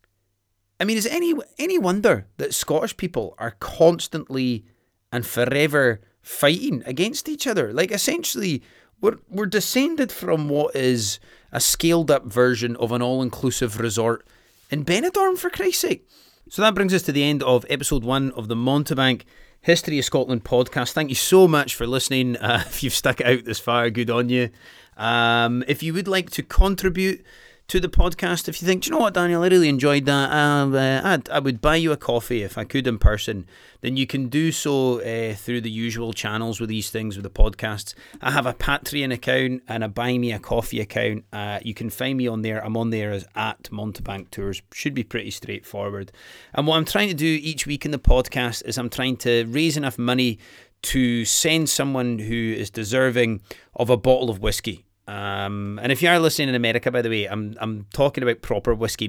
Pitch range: 110-150 Hz